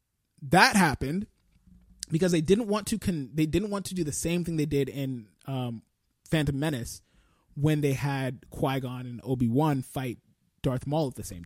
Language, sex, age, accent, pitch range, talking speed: English, male, 20-39, American, 130-185 Hz, 180 wpm